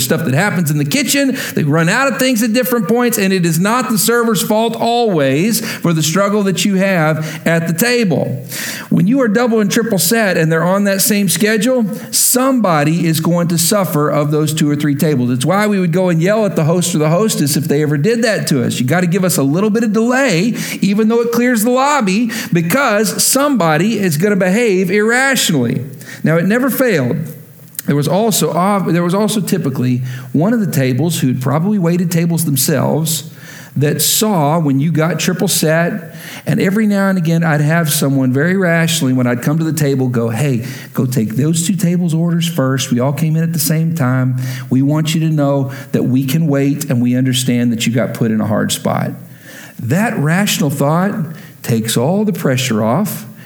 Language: English